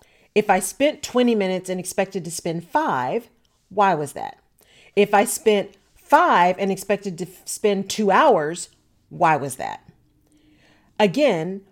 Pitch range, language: 175-220 Hz, English